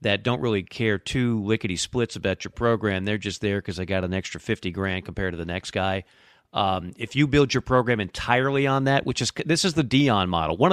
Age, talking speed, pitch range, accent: 40-59, 235 wpm, 105-140 Hz, American